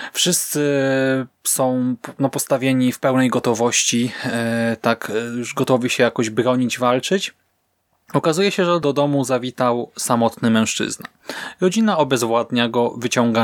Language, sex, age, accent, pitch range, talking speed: Polish, male, 20-39, native, 115-150 Hz, 115 wpm